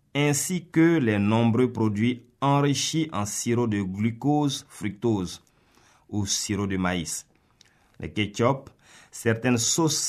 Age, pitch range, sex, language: 50-69, 95-130 Hz, male, French